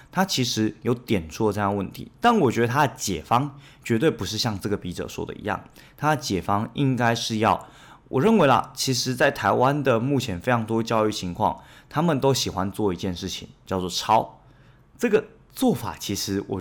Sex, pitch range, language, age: male, 95-135 Hz, Chinese, 20-39